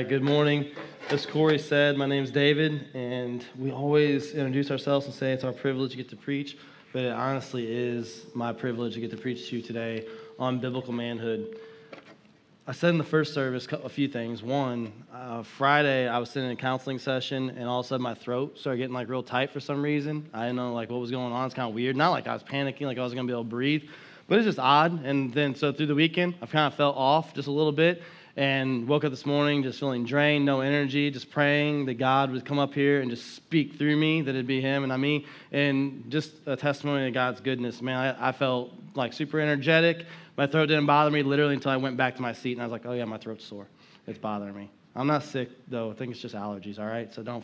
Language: English